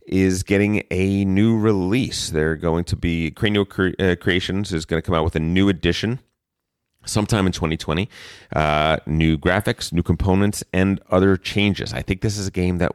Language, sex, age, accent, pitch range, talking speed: English, male, 30-49, American, 75-95 Hz, 180 wpm